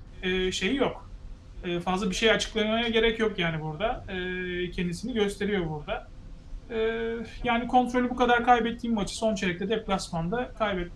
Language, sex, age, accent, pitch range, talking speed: Turkish, male, 40-59, native, 180-225 Hz, 140 wpm